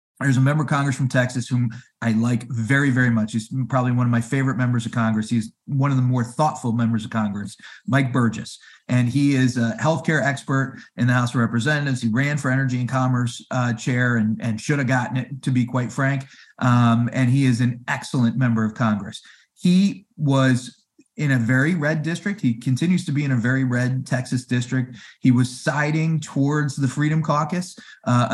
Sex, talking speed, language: male, 205 wpm, English